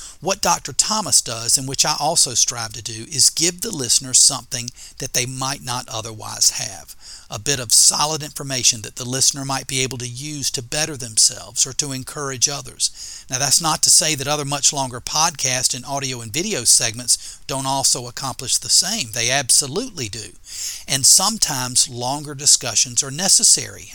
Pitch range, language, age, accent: 120-145 Hz, English, 40-59, American